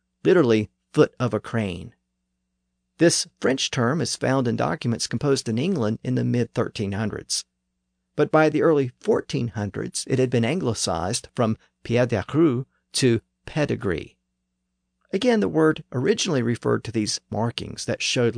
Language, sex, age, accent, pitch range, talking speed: English, male, 50-69, American, 85-130 Hz, 135 wpm